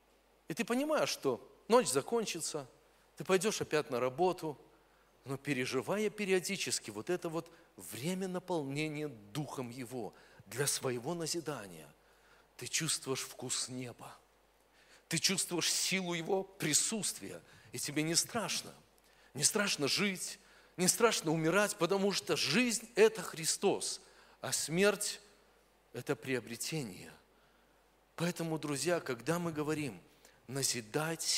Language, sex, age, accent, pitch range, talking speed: Russian, male, 40-59, native, 130-185 Hz, 110 wpm